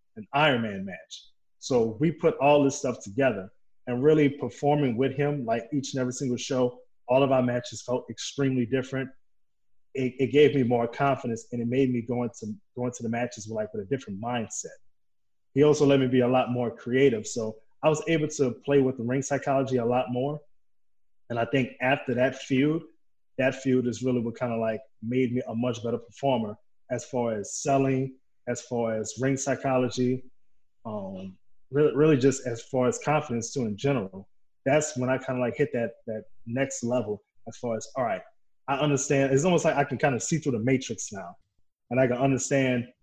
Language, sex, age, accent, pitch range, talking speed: English, male, 20-39, American, 120-140 Hz, 205 wpm